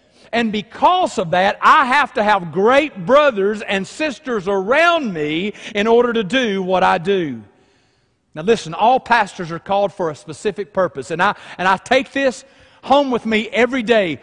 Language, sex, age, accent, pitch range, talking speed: English, male, 40-59, American, 190-270 Hz, 175 wpm